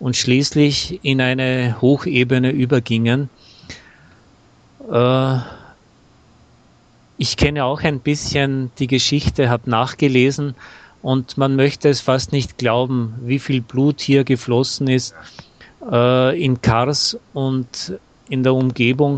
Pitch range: 120-135 Hz